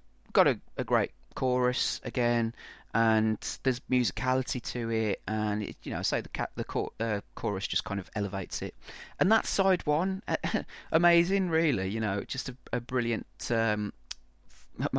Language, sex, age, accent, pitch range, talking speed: English, male, 30-49, British, 95-125 Hz, 165 wpm